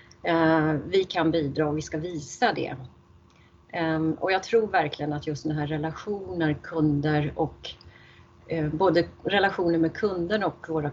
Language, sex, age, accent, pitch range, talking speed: Swedish, female, 30-49, native, 155-185 Hz, 145 wpm